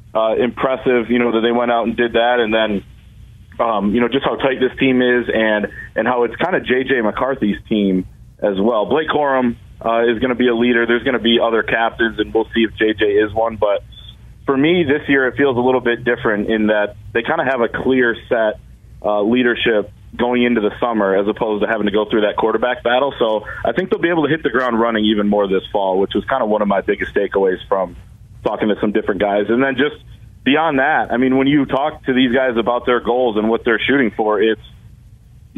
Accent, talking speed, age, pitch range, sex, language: American, 240 wpm, 30-49, 110-130 Hz, male, English